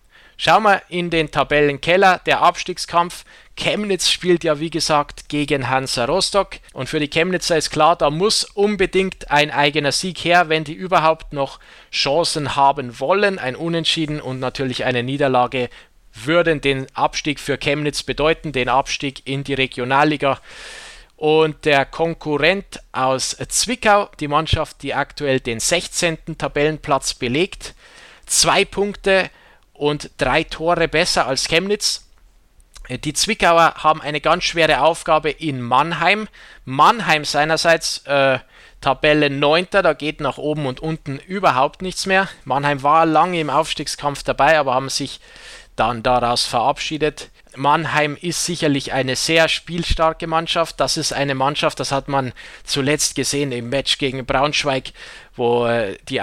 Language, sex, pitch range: German, male, 135-165 Hz